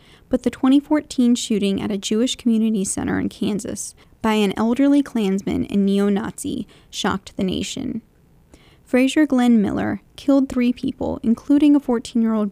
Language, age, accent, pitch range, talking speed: English, 10-29, American, 215-265 Hz, 140 wpm